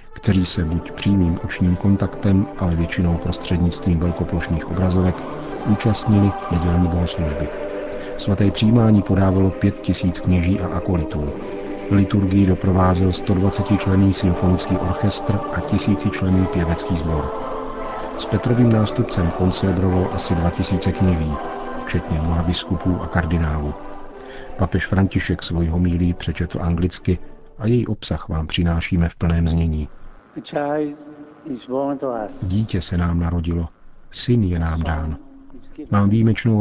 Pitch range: 85-100 Hz